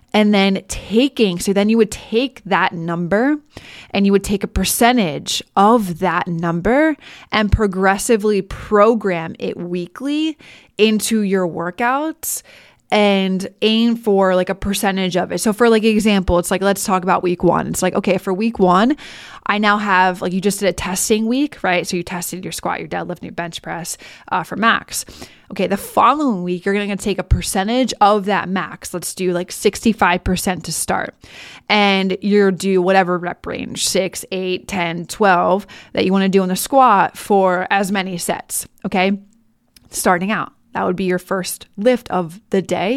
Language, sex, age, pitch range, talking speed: English, female, 20-39, 180-215 Hz, 180 wpm